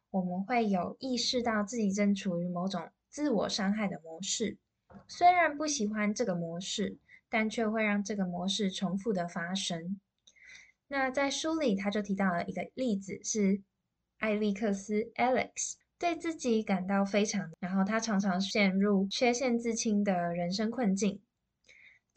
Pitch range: 190-235 Hz